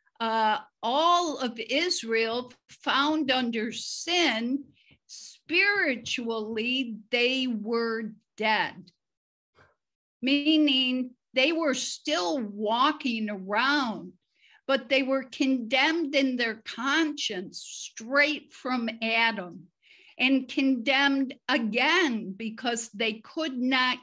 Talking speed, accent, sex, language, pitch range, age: 85 wpm, American, female, English, 225-280 Hz, 50-69